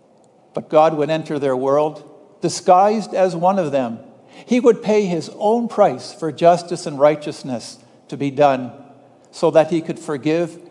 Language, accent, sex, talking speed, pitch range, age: English, American, male, 165 wpm, 140-180 Hz, 60-79